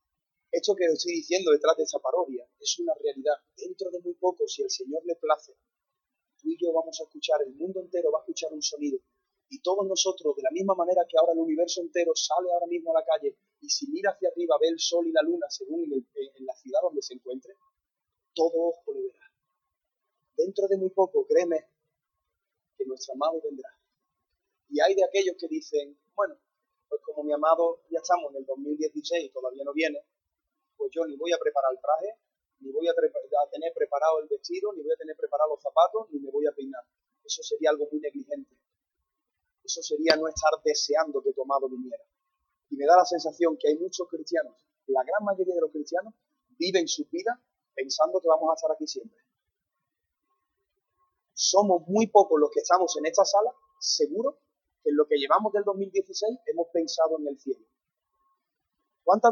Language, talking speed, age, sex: Spanish, 195 wpm, 30-49, male